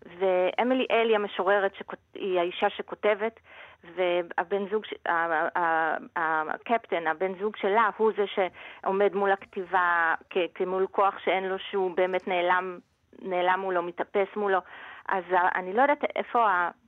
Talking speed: 115 wpm